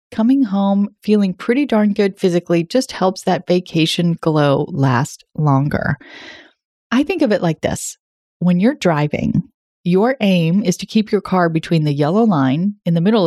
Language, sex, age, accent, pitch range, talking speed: English, female, 30-49, American, 175-245 Hz, 165 wpm